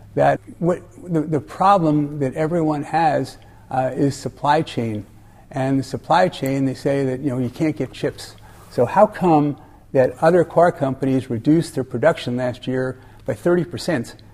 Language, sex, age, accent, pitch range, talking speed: English, male, 50-69, American, 120-150 Hz, 165 wpm